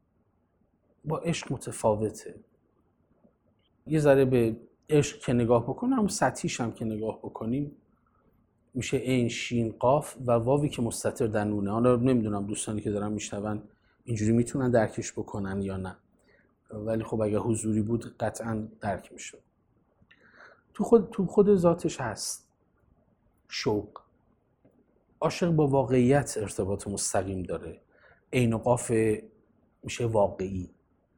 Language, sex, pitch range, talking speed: Persian, male, 105-135 Hz, 120 wpm